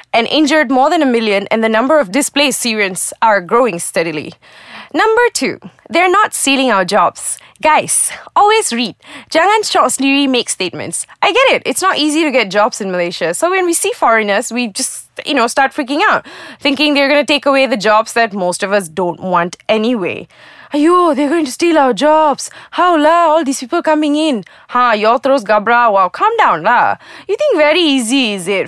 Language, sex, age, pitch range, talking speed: English, female, 20-39, 215-315 Hz, 200 wpm